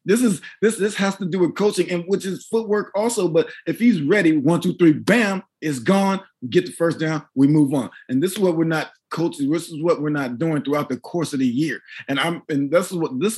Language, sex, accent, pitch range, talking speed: English, male, American, 140-195 Hz, 255 wpm